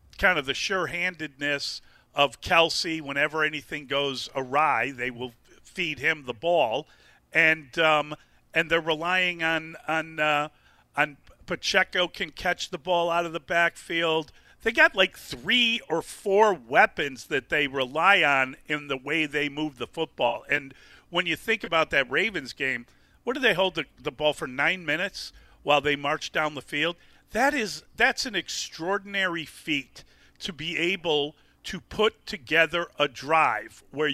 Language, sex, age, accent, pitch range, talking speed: English, male, 50-69, American, 140-175 Hz, 160 wpm